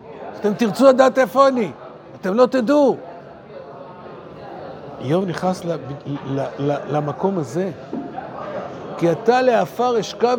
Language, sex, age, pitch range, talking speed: Hebrew, male, 50-69, 170-230 Hz, 110 wpm